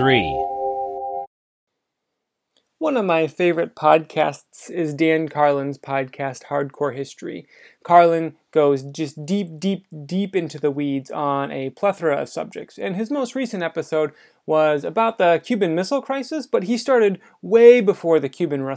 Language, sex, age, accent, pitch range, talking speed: English, male, 30-49, American, 155-210 Hz, 135 wpm